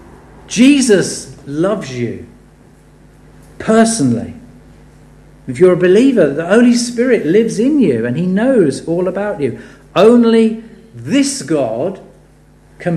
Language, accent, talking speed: English, British, 110 wpm